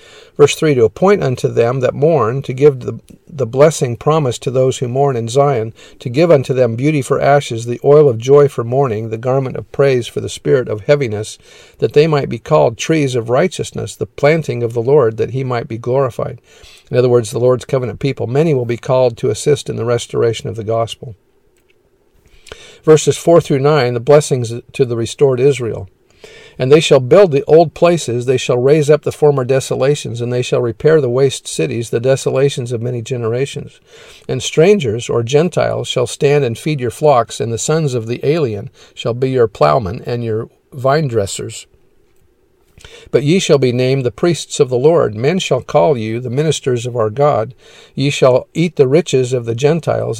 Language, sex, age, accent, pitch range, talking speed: English, male, 50-69, American, 120-150 Hz, 195 wpm